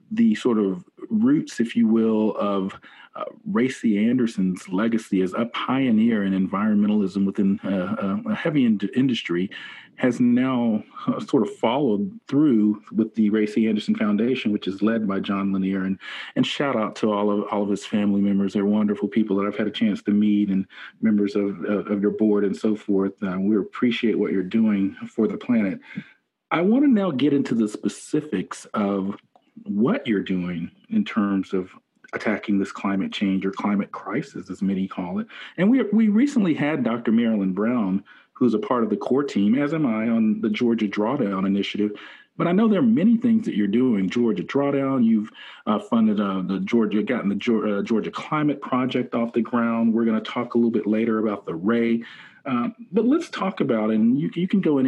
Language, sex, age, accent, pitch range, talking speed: English, male, 40-59, American, 100-160 Hz, 200 wpm